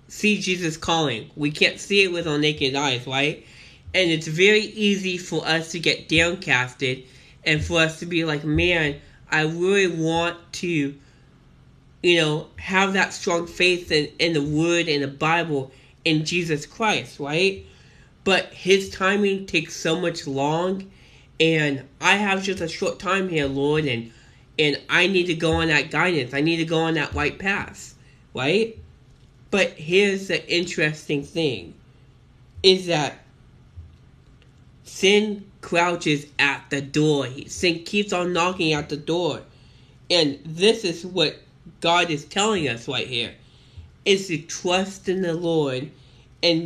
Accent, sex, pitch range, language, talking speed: American, male, 140-180 Hz, English, 155 wpm